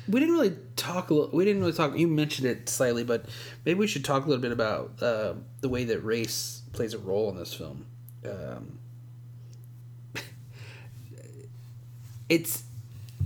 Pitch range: 115-135 Hz